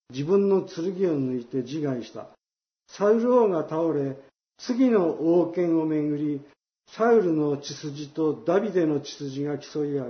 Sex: male